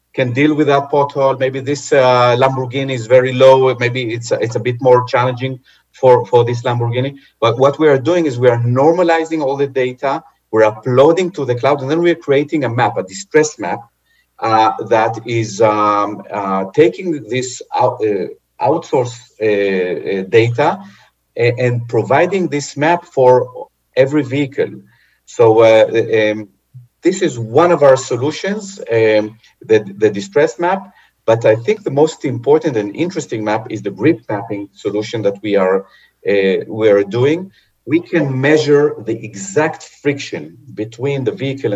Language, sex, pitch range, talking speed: English, male, 110-150 Hz, 165 wpm